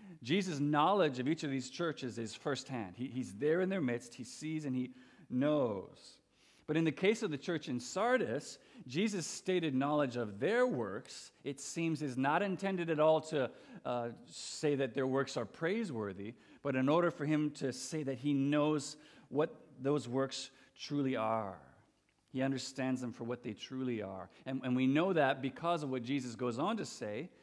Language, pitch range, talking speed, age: English, 130-165 Hz, 190 wpm, 50-69